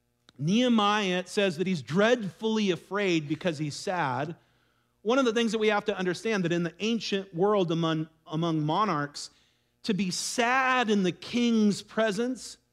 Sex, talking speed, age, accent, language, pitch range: male, 160 wpm, 40-59, American, English, 160-215 Hz